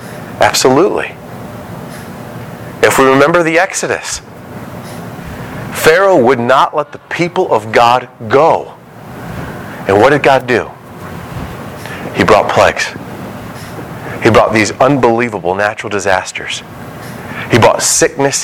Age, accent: 40-59, American